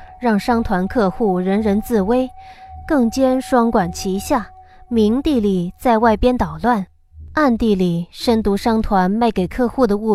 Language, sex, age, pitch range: Chinese, female, 20-39, 180-245 Hz